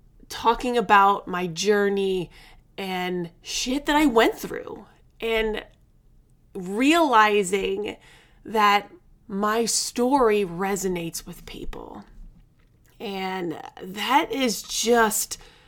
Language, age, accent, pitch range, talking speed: English, 30-49, American, 185-235 Hz, 85 wpm